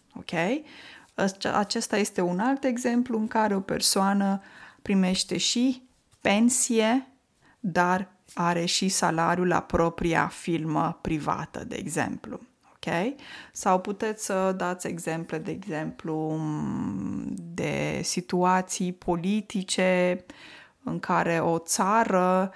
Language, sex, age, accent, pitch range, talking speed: Romanian, female, 20-39, native, 170-210 Hz, 95 wpm